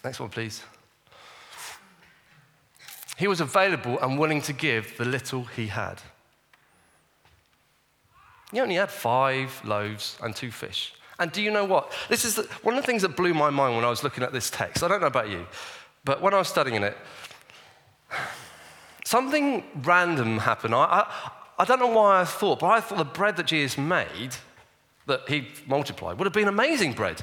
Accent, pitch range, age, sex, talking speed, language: British, 125-190 Hz, 30-49, male, 180 wpm, English